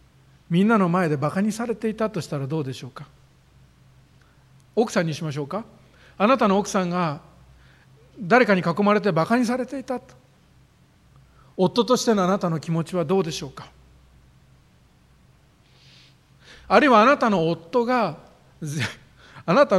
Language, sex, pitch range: Japanese, male, 145-210 Hz